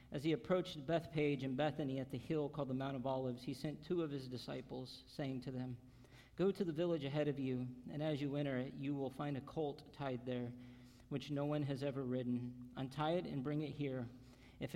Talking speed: 225 wpm